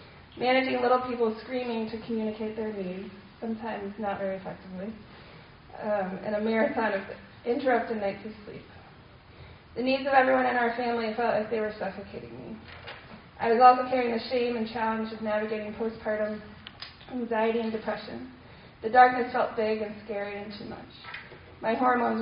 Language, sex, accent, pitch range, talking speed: English, female, American, 210-245 Hz, 160 wpm